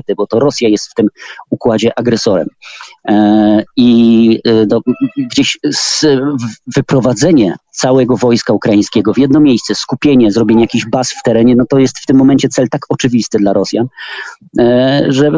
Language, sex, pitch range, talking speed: Polish, male, 110-130 Hz, 135 wpm